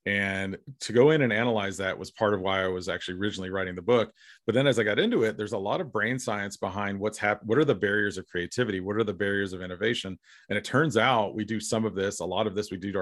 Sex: male